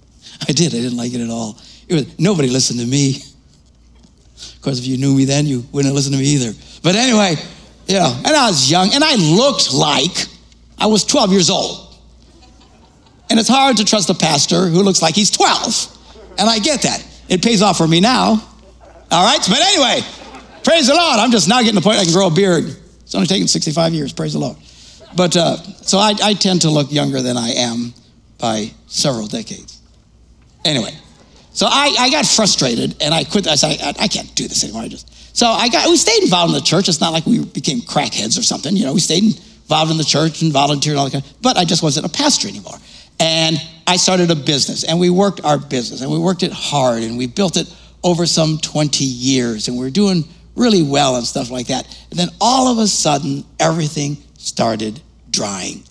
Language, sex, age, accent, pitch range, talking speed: English, male, 60-79, American, 135-195 Hz, 220 wpm